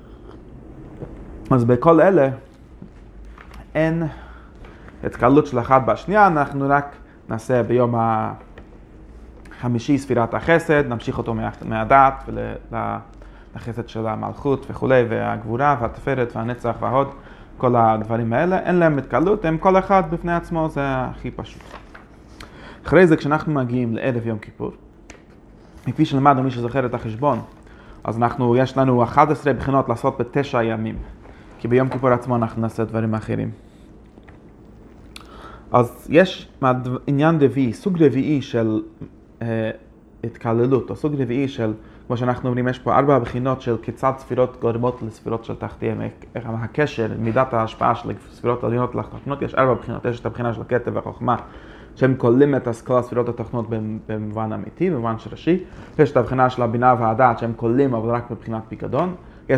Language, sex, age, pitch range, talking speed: Hebrew, male, 30-49, 115-135 Hz, 135 wpm